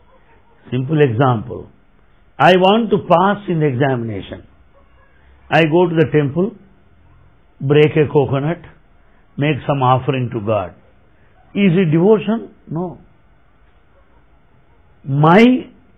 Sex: male